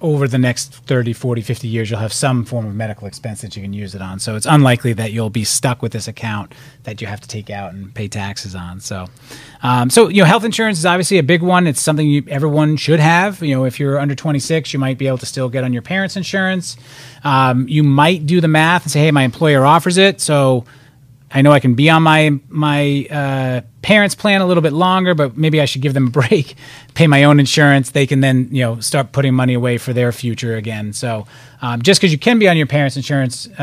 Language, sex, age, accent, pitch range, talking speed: English, male, 30-49, American, 120-150 Hz, 250 wpm